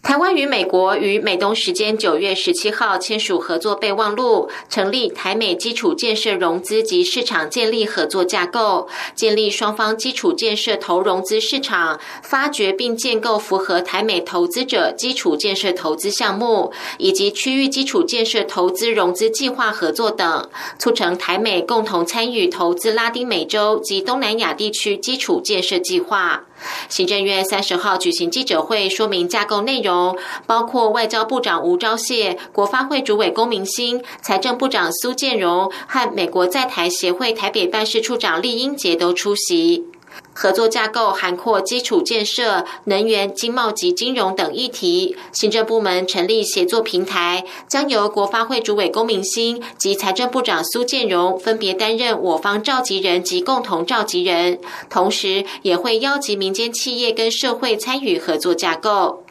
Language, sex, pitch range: German, female, 195-255 Hz